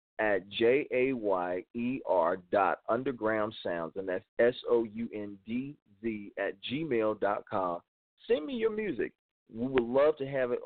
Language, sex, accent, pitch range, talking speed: English, male, American, 100-120 Hz, 175 wpm